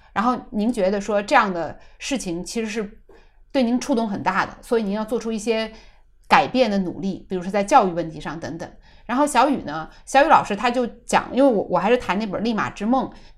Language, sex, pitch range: Chinese, female, 185-265 Hz